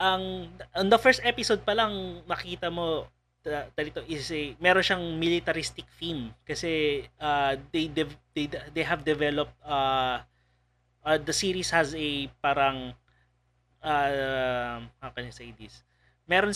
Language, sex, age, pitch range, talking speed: Filipino, male, 20-39, 125-165 Hz, 135 wpm